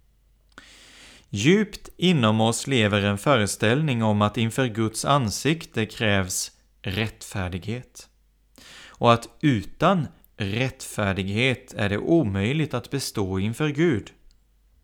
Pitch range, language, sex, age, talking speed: 100-130 Hz, Swedish, male, 30-49, 95 wpm